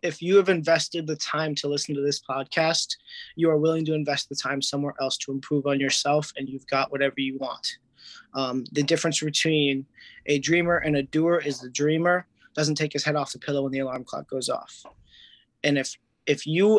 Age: 20-39